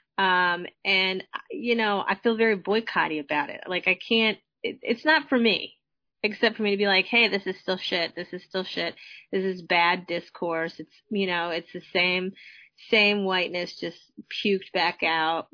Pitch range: 175-225 Hz